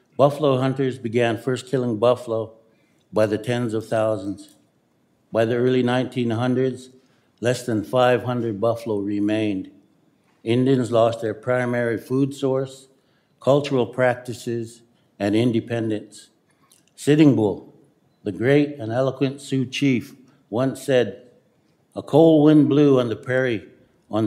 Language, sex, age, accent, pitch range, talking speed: English, male, 60-79, American, 110-135 Hz, 120 wpm